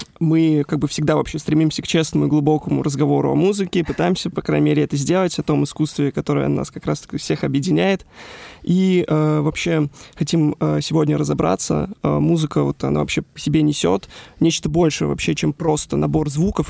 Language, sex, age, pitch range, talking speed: Russian, male, 20-39, 140-160 Hz, 175 wpm